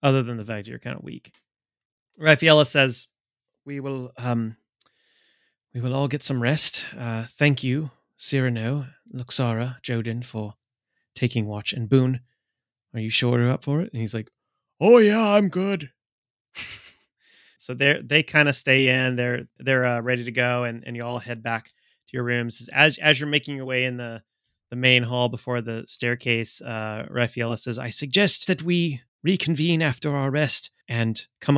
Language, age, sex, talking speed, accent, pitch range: English, 30-49, male, 175 wpm, American, 115-135 Hz